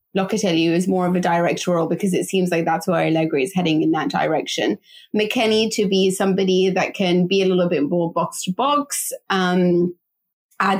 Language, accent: English, British